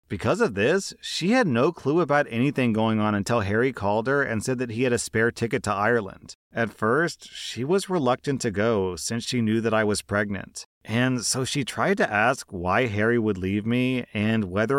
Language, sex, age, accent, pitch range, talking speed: English, male, 30-49, American, 110-140 Hz, 210 wpm